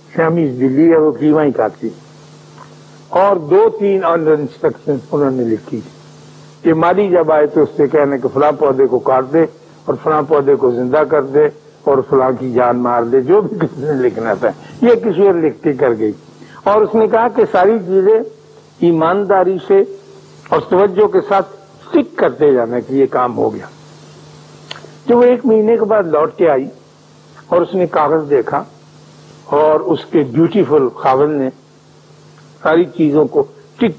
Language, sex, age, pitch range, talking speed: Urdu, male, 60-79, 145-205 Hz, 175 wpm